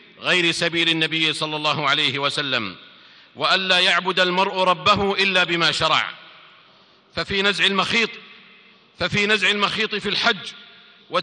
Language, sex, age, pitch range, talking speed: Arabic, male, 50-69, 155-200 Hz, 125 wpm